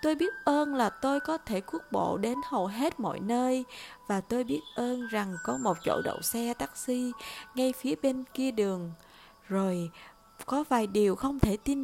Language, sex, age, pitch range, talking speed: Vietnamese, female, 20-39, 195-265 Hz, 190 wpm